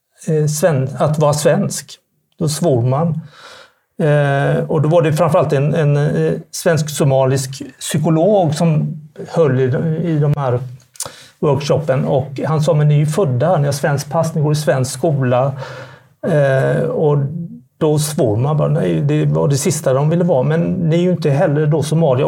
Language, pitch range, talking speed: Swedish, 135-165 Hz, 170 wpm